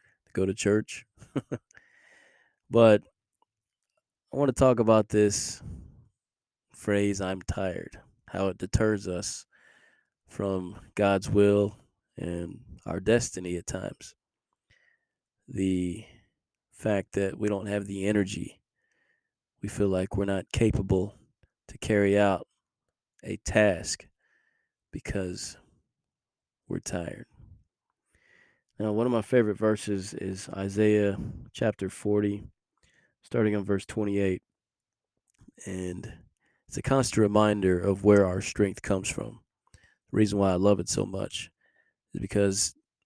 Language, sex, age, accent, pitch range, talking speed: English, male, 20-39, American, 95-110 Hz, 115 wpm